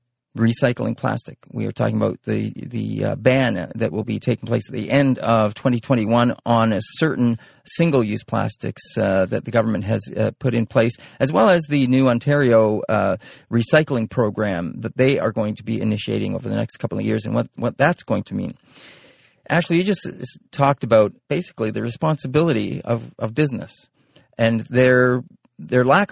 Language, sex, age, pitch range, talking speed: English, male, 40-59, 115-145 Hz, 180 wpm